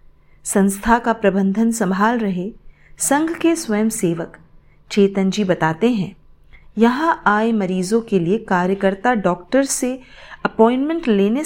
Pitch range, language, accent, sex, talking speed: 185-245 Hz, Hindi, native, female, 120 wpm